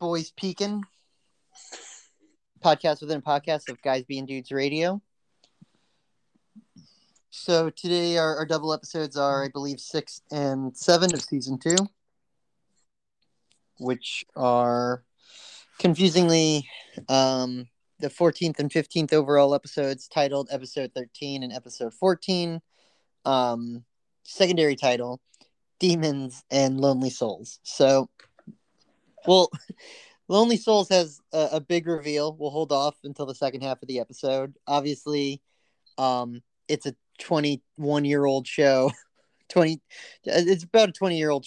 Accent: American